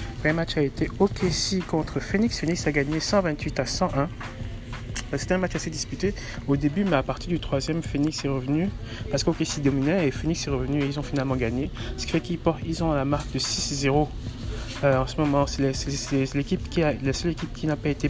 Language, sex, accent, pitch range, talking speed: French, male, French, 120-150 Hz, 230 wpm